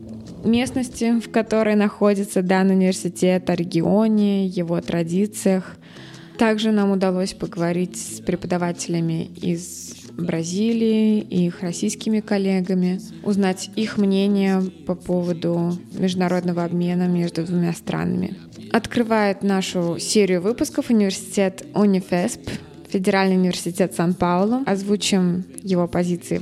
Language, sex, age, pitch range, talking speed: Russian, female, 20-39, 175-205 Hz, 100 wpm